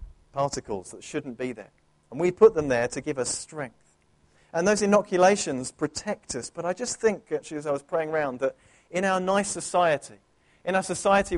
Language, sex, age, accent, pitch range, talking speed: English, male, 40-59, British, 140-185 Hz, 195 wpm